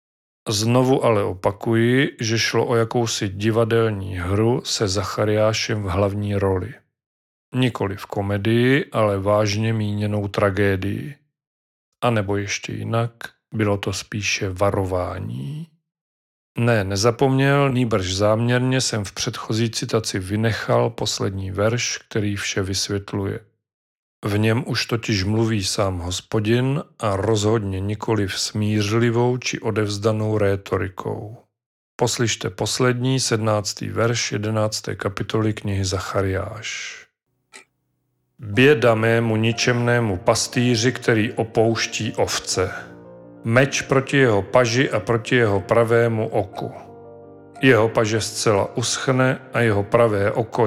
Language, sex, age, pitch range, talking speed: Czech, male, 40-59, 100-120 Hz, 105 wpm